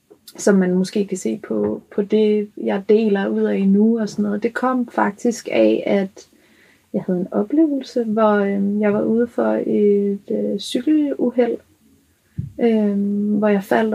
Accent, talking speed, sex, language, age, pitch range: native, 165 wpm, female, Danish, 30-49, 190-220 Hz